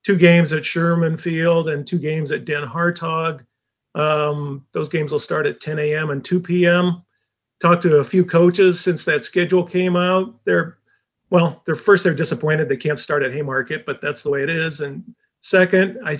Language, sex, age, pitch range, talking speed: English, male, 40-59, 150-175 Hz, 185 wpm